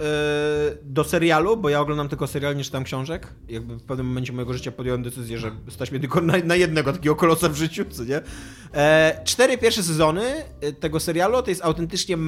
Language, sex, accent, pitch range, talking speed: Polish, male, native, 130-160 Hz, 185 wpm